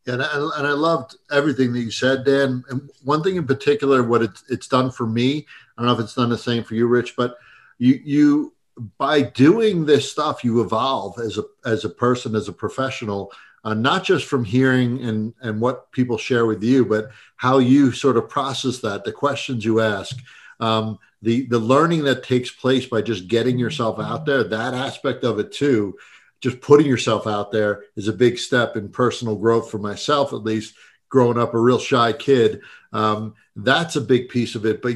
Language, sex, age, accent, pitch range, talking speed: English, male, 50-69, American, 110-130 Hz, 205 wpm